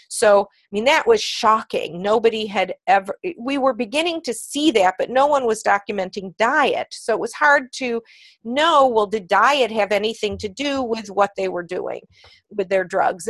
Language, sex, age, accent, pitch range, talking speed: English, female, 40-59, American, 205-260 Hz, 190 wpm